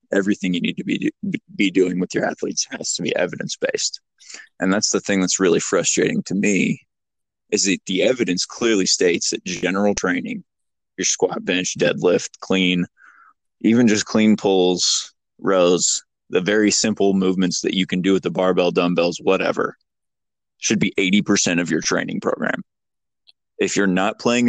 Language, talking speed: English, 160 wpm